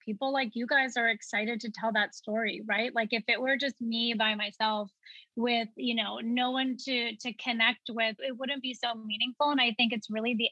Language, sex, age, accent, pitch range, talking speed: English, female, 20-39, American, 225-265 Hz, 220 wpm